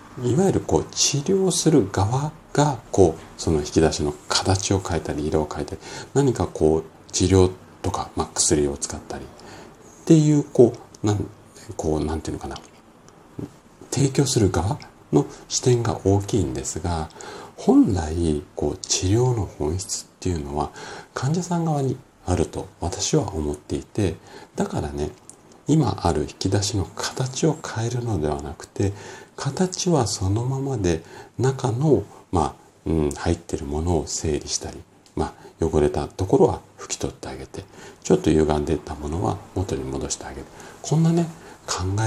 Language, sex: Japanese, male